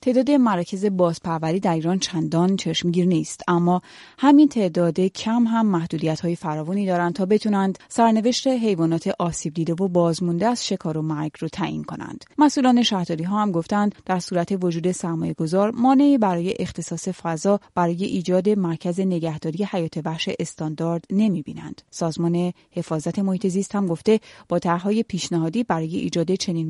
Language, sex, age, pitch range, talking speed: Persian, female, 30-49, 165-220 Hz, 140 wpm